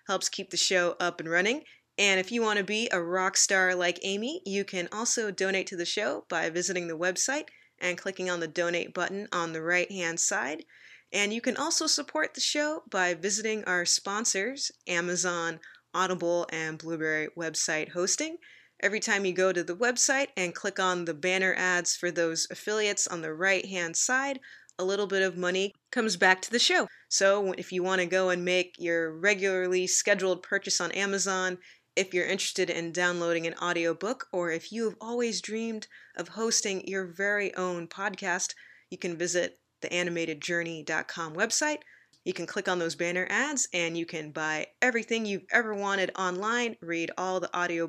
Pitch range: 175-210 Hz